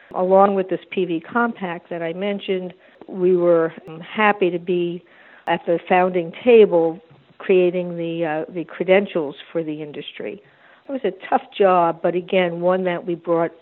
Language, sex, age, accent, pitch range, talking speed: English, female, 50-69, American, 165-185 Hz, 160 wpm